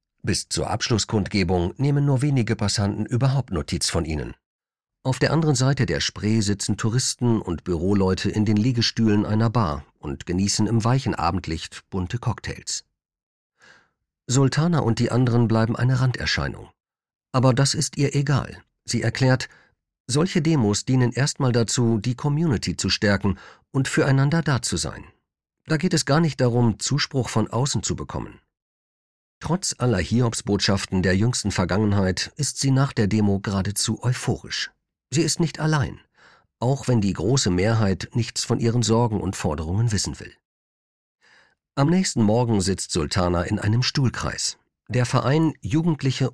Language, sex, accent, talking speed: German, male, German, 145 wpm